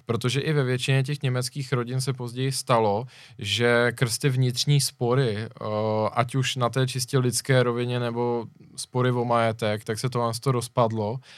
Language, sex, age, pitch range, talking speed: Czech, male, 20-39, 110-130 Hz, 165 wpm